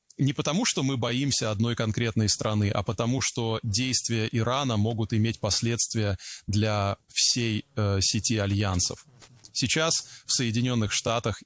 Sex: male